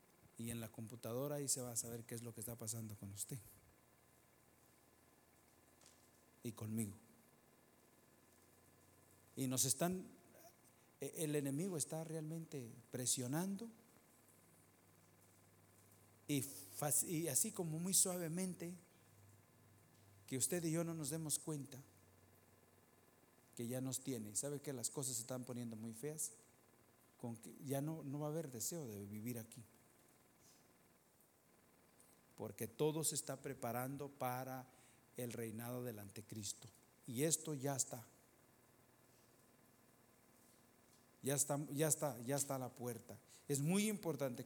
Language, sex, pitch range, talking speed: English, male, 115-150 Hz, 125 wpm